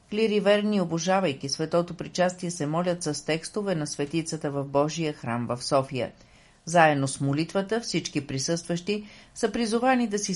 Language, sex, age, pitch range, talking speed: Bulgarian, female, 50-69, 145-195 Hz, 145 wpm